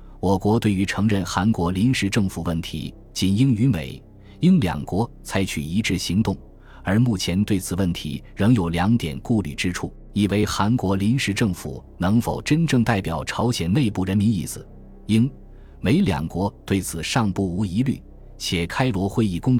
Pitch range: 85-110 Hz